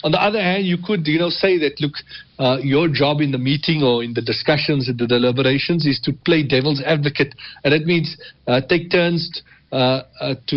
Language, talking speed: English, 220 wpm